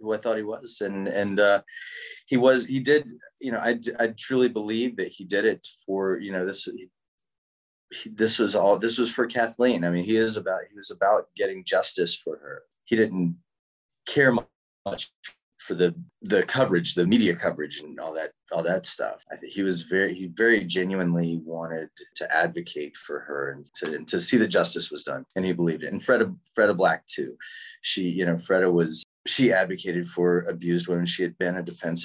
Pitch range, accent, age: 85-115 Hz, American, 30-49